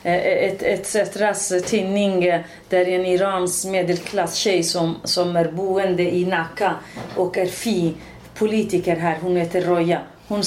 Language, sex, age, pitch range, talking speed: Swedish, female, 30-49, 175-215 Hz, 140 wpm